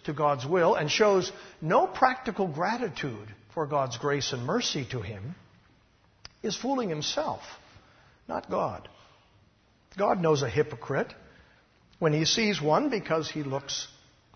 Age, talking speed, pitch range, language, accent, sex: 60-79, 130 wpm, 125-185 Hz, English, American, male